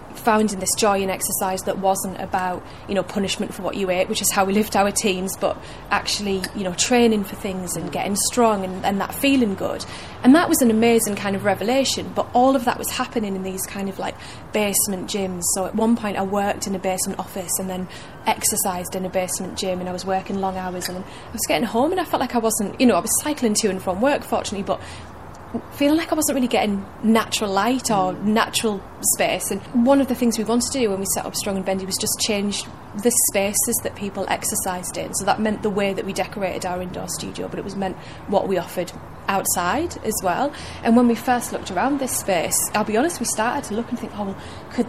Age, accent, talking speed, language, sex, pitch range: 30-49, British, 240 wpm, English, female, 190-235 Hz